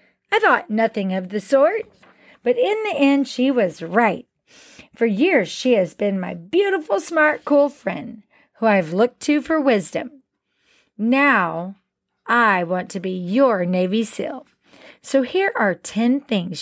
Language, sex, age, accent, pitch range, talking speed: English, female, 40-59, American, 200-285 Hz, 150 wpm